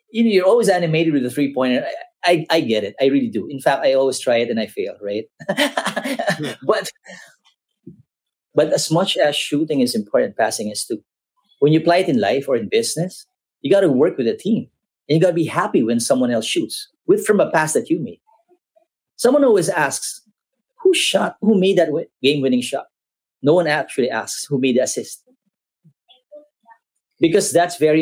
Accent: Filipino